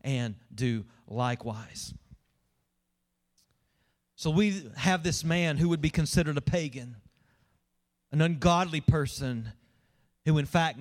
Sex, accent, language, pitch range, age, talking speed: male, American, English, 125-190 Hz, 40-59, 110 wpm